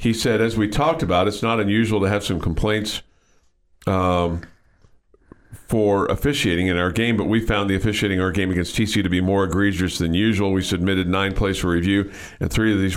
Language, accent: English, American